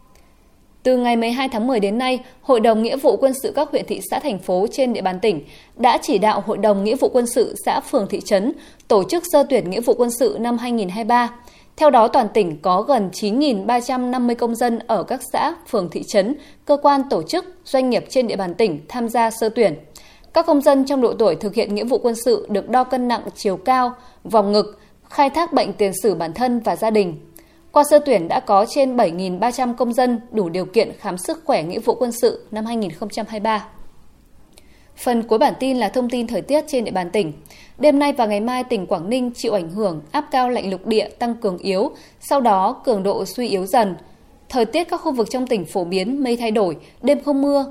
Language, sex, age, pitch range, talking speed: Vietnamese, female, 20-39, 205-265 Hz, 225 wpm